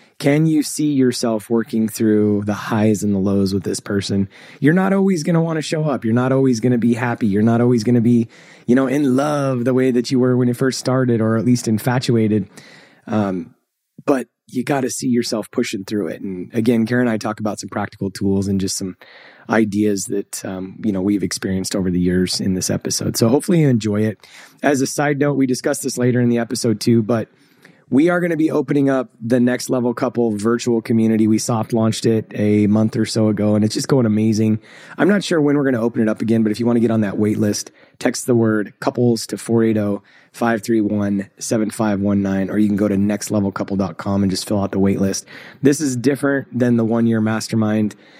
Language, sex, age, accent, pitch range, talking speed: English, male, 20-39, American, 105-125 Hz, 225 wpm